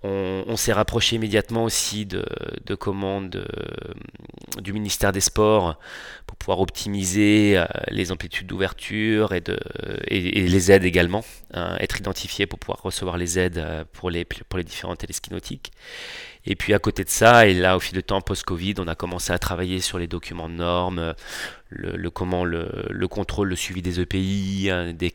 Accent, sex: French, male